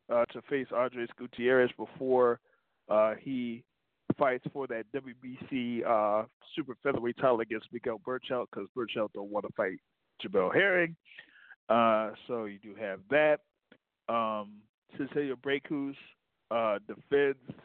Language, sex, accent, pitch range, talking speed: English, male, American, 115-140 Hz, 130 wpm